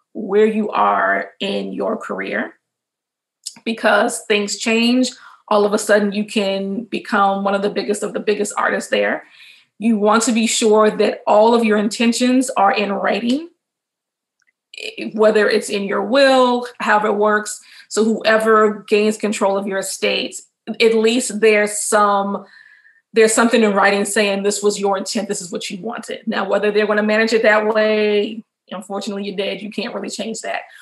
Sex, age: female, 20-39